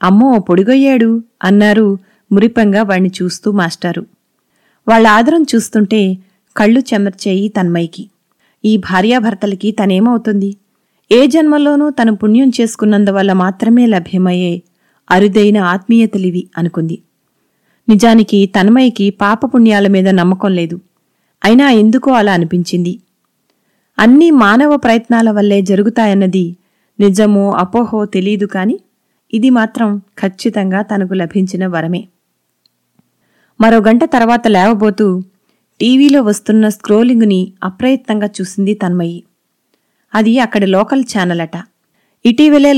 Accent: native